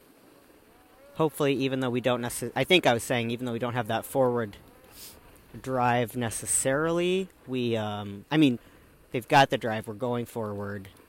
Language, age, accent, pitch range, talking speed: English, 40-59, American, 110-130 Hz, 170 wpm